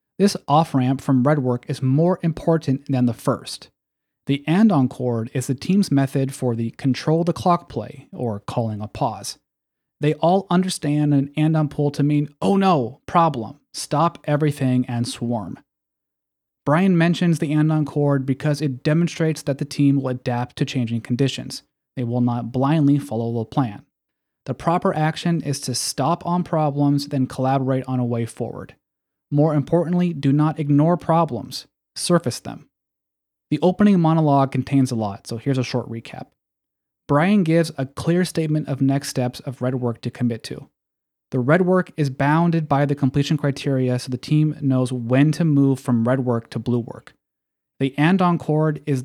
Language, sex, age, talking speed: English, male, 30-49, 175 wpm